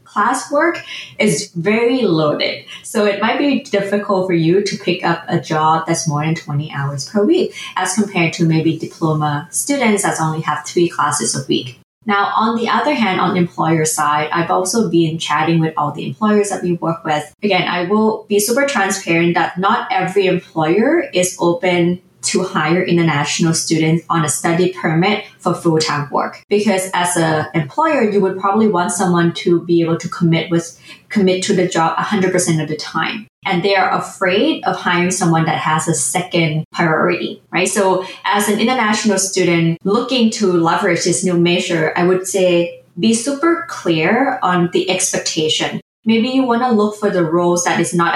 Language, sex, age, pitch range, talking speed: English, female, 20-39, 165-205 Hz, 180 wpm